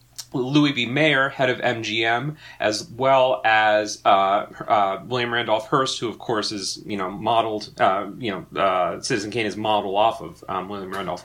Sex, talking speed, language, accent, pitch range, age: male, 180 wpm, English, American, 120-150 Hz, 30-49